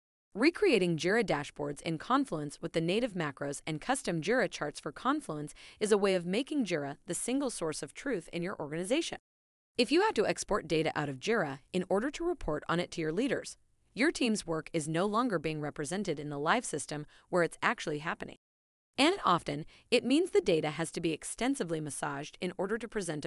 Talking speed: 200 wpm